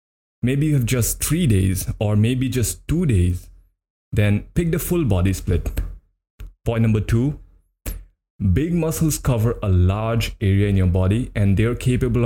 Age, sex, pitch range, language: 20-39, male, 90-120 Hz, English